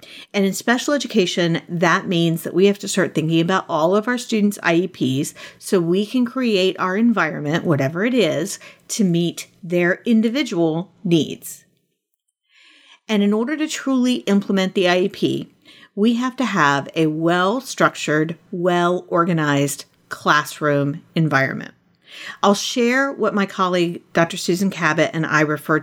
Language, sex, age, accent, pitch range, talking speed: English, female, 40-59, American, 165-210 Hz, 140 wpm